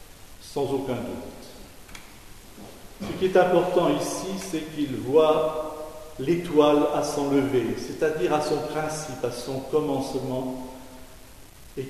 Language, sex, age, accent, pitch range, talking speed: French, male, 50-69, French, 125-160 Hz, 115 wpm